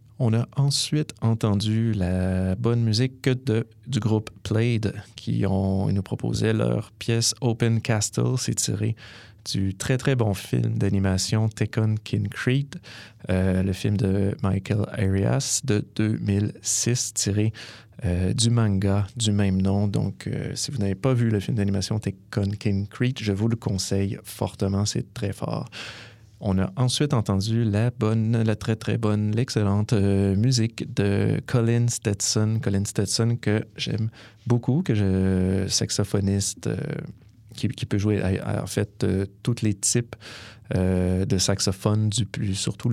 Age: 30-49